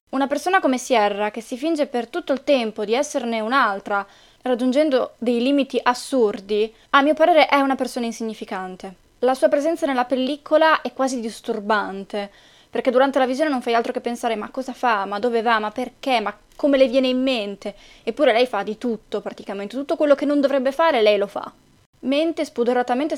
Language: Italian